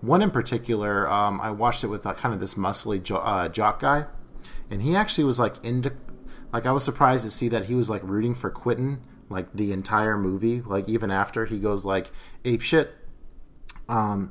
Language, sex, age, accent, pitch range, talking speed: English, male, 30-49, American, 95-120 Hz, 200 wpm